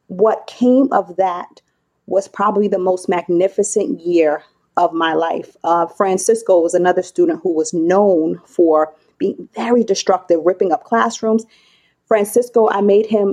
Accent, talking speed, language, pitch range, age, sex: American, 145 wpm, English, 180-235 Hz, 30-49, female